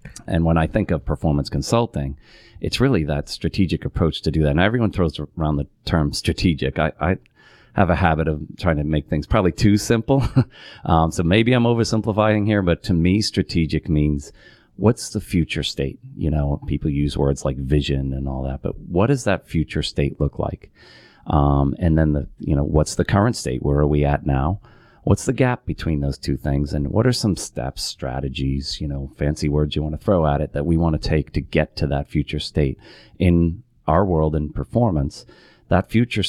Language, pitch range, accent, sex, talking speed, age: English, 75-95 Hz, American, male, 205 wpm, 40-59